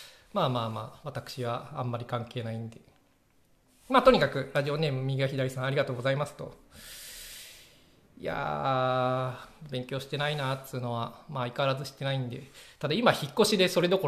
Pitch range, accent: 125-160 Hz, native